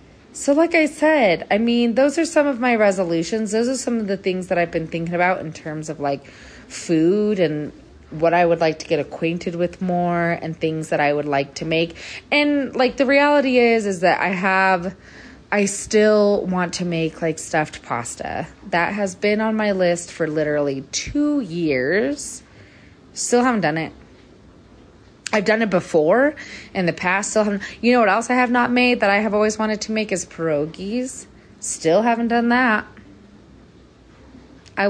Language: English